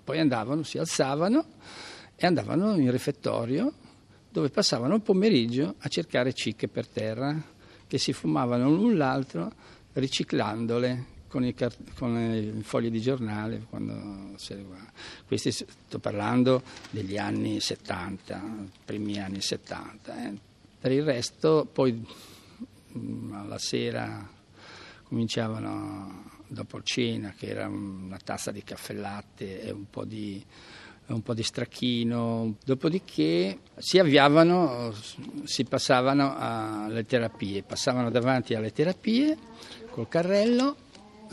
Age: 50-69